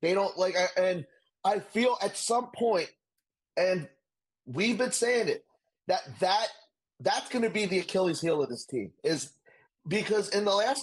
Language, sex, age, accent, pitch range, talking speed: English, male, 30-49, American, 180-250 Hz, 165 wpm